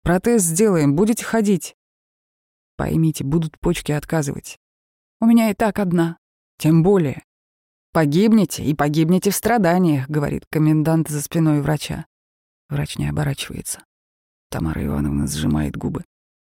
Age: 30-49